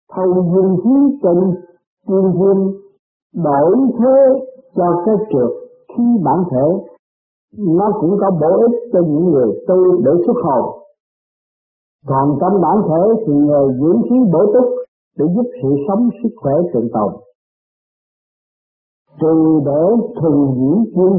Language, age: Vietnamese, 50-69